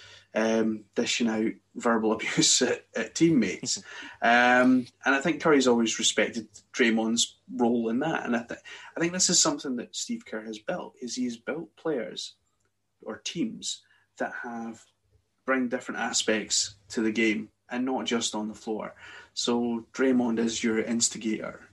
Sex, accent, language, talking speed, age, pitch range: male, British, English, 155 wpm, 30-49, 110-125 Hz